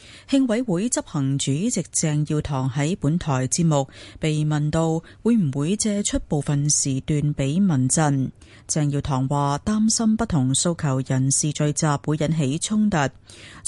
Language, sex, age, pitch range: Chinese, female, 30-49, 135-190 Hz